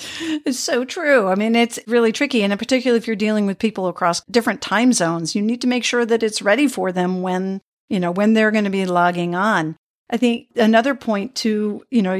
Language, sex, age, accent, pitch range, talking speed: English, female, 50-69, American, 190-230 Hz, 230 wpm